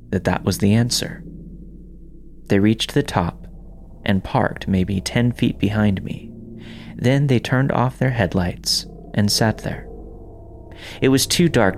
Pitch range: 90-120 Hz